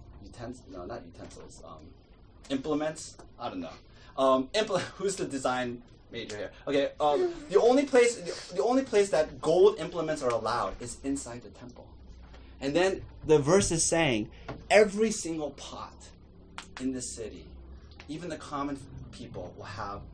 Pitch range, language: 105-140 Hz, English